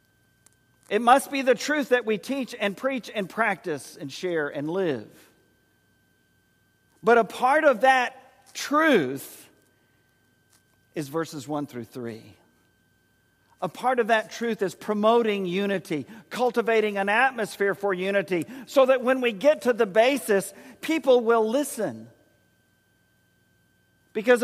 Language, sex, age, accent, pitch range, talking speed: English, male, 50-69, American, 150-240 Hz, 130 wpm